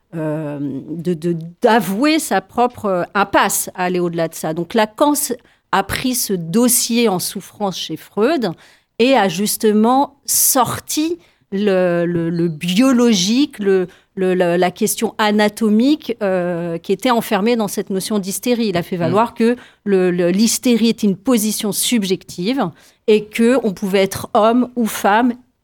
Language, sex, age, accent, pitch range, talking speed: French, female, 40-59, French, 185-230 Hz, 145 wpm